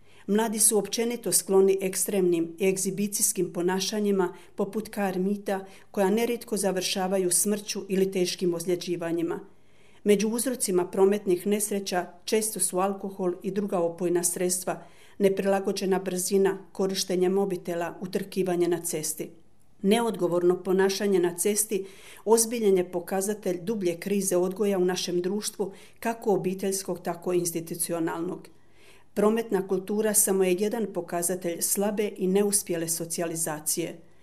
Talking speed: 110 wpm